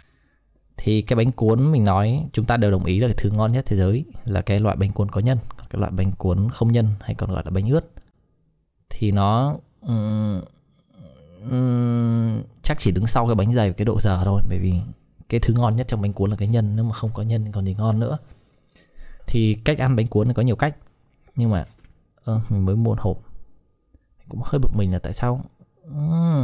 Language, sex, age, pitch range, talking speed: Vietnamese, male, 20-39, 95-115 Hz, 220 wpm